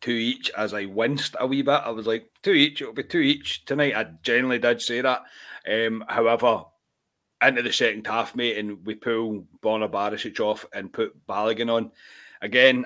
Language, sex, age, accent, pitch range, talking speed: English, male, 30-49, British, 110-135 Hz, 190 wpm